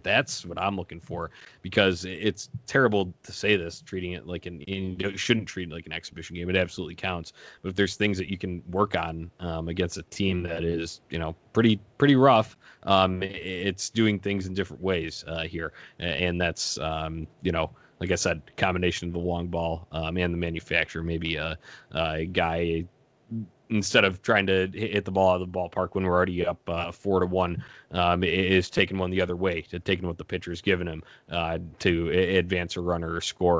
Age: 20-39